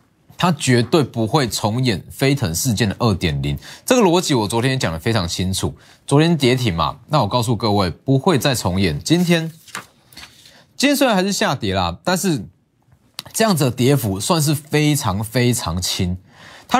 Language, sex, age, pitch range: Chinese, male, 20-39, 110-170 Hz